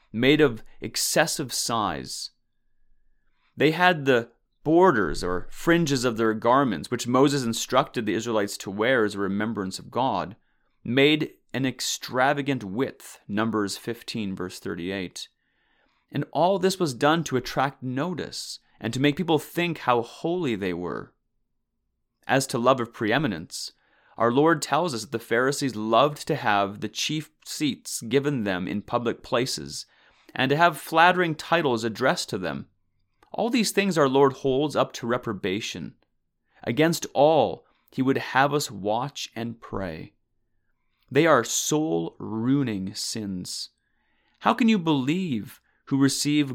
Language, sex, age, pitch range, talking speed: English, male, 30-49, 110-145 Hz, 140 wpm